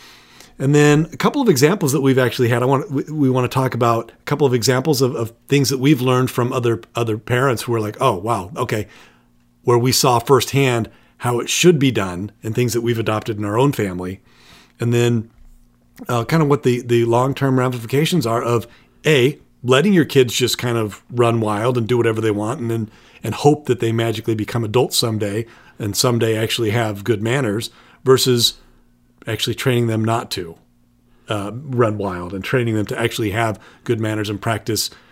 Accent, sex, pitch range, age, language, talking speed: American, male, 110-135 Hz, 40-59, English, 200 wpm